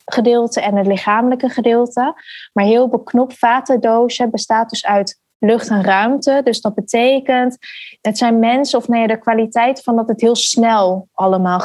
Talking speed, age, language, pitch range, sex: 160 wpm, 20-39, Dutch, 210-240 Hz, female